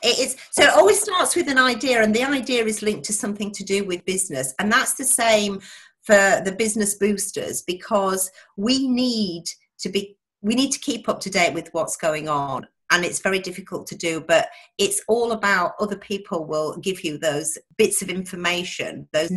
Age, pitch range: 40-59, 180-220 Hz